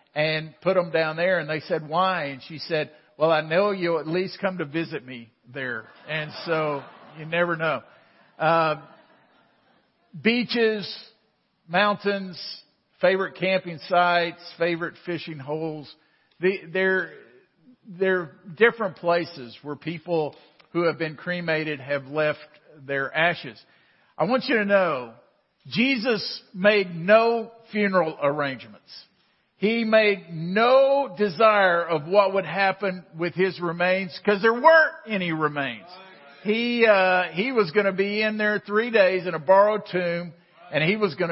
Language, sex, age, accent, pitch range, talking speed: English, male, 50-69, American, 160-210 Hz, 140 wpm